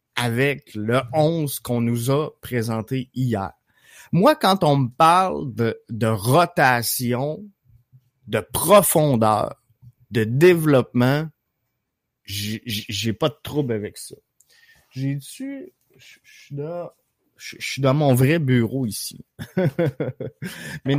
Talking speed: 110 wpm